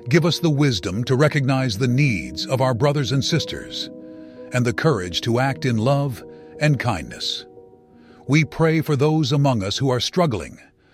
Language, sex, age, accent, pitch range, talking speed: English, male, 60-79, American, 115-145 Hz, 170 wpm